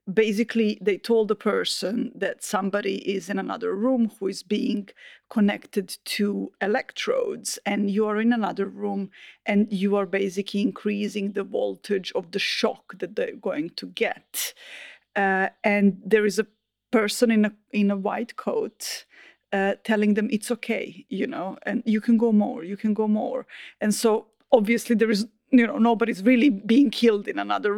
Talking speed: 170 wpm